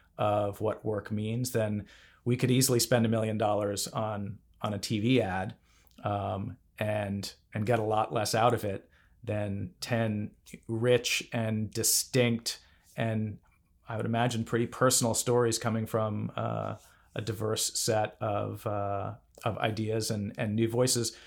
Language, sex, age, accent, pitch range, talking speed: English, male, 40-59, American, 105-120 Hz, 150 wpm